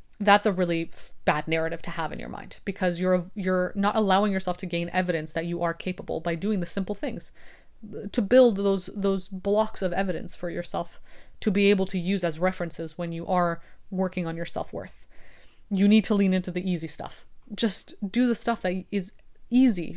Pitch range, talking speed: 175-215 Hz, 200 wpm